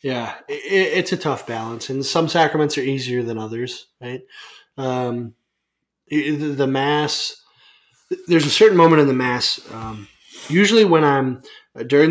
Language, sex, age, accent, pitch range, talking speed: English, male, 20-39, American, 120-145 Hz, 140 wpm